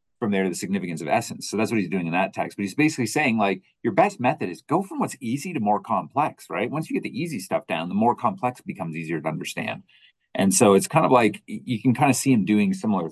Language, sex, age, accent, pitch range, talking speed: English, male, 30-49, American, 100-140 Hz, 275 wpm